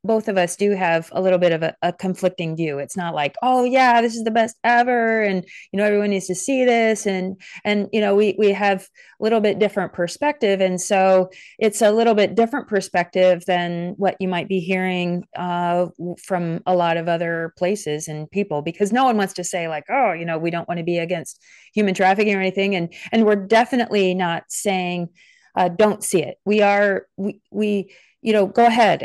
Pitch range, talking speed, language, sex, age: 175-215 Hz, 215 wpm, English, female, 30-49